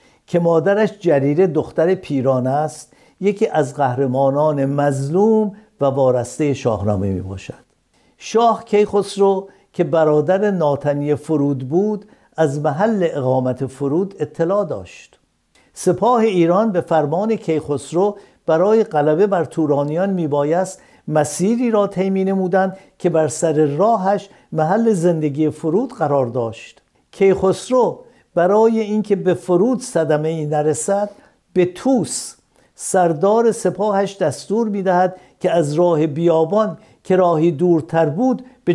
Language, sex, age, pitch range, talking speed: Persian, male, 60-79, 145-200 Hz, 115 wpm